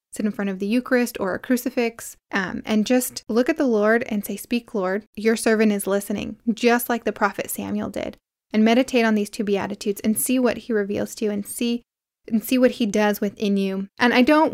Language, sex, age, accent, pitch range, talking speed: English, female, 10-29, American, 205-240 Hz, 225 wpm